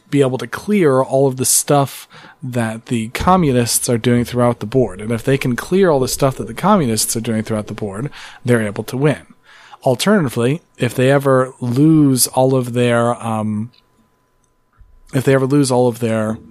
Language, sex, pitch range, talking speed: English, male, 115-140 Hz, 190 wpm